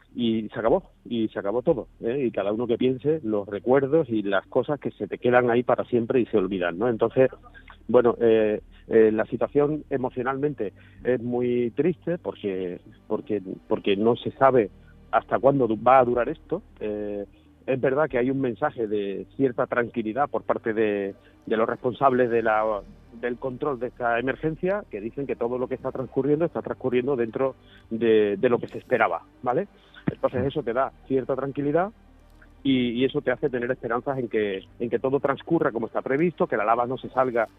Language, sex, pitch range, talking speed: Spanish, male, 110-135 Hz, 190 wpm